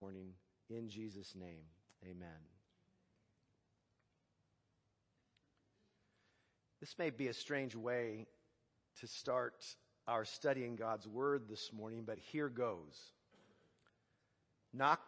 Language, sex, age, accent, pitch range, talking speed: English, male, 50-69, American, 115-145 Hz, 90 wpm